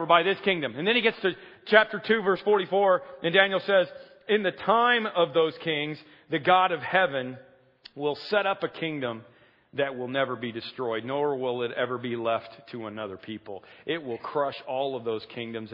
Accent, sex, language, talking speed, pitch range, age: American, male, English, 195 wpm, 110-150 Hz, 40-59